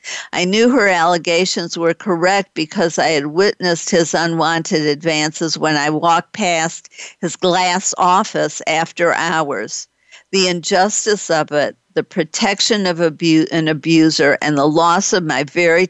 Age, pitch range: 50-69, 155-180 Hz